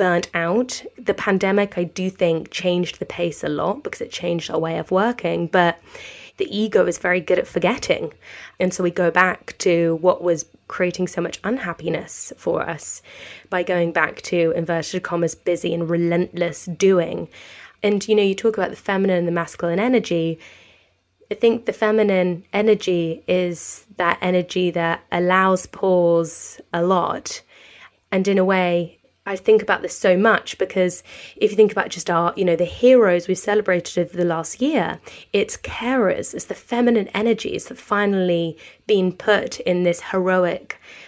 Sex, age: female, 20-39